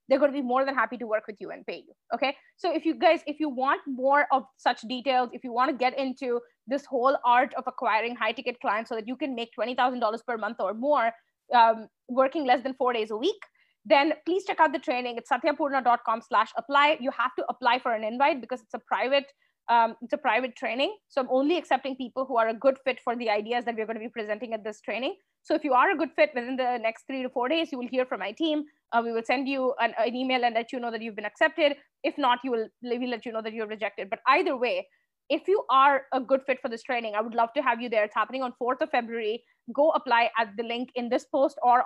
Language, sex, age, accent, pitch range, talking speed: English, female, 20-39, Indian, 230-275 Hz, 265 wpm